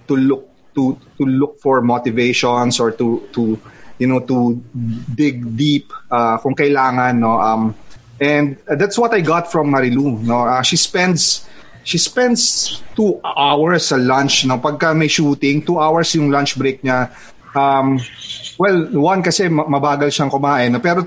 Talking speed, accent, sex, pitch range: 155 wpm, Filipino, male, 130-170 Hz